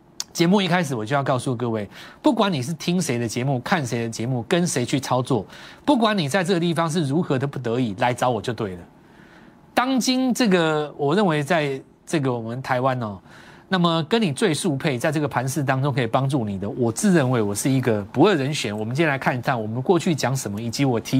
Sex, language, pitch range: male, Chinese, 120-175 Hz